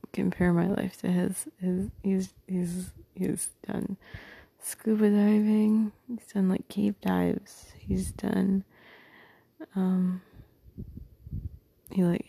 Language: English